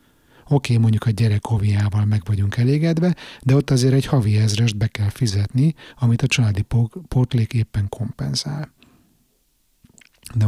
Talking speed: 145 wpm